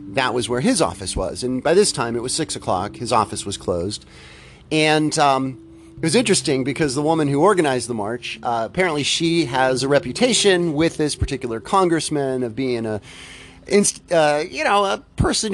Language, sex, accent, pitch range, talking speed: English, male, American, 110-150 Hz, 185 wpm